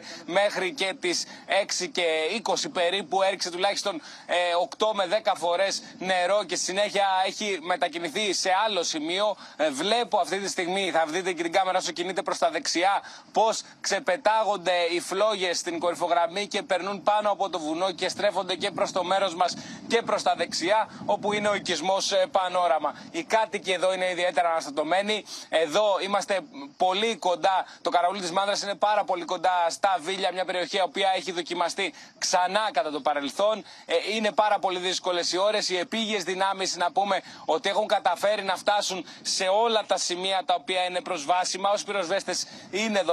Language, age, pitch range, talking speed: Greek, 20-39, 180-210 Hz, 165 wpm